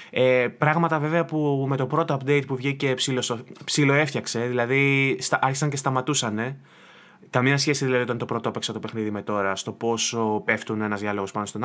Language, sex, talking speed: Greek, male, 180 wpm